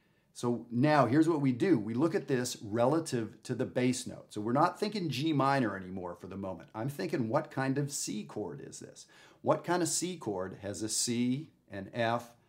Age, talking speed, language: 50-69, 210 wpm, English